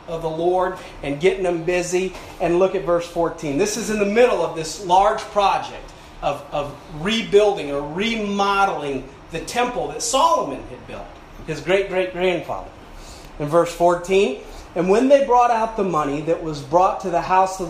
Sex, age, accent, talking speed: male, 40-59, American, 175 wpm